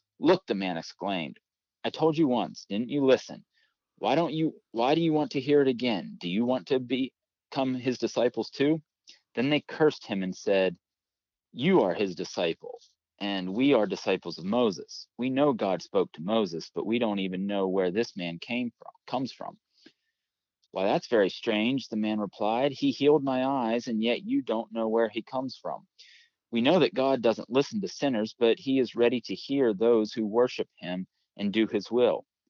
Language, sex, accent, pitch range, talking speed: English, male, American, 105-140 Hz, 195 wpm